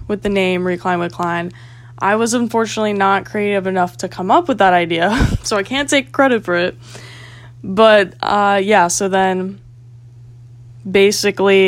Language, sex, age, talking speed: English, female, 10-29, 160 wpm